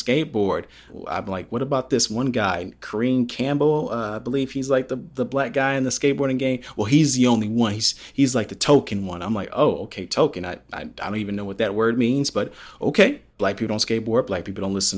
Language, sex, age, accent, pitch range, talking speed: English, male, 30-49, American, 105-125 Hz, 235 wpm